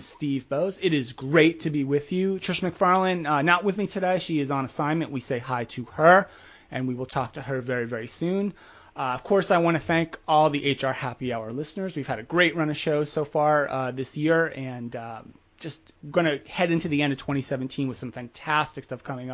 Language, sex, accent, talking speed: English, male, American, 235 wpm